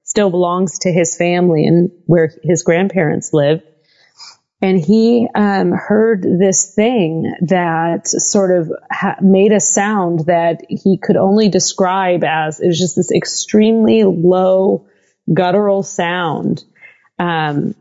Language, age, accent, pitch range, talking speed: English, 30-49, American, 175-220 Hz, 130 wpm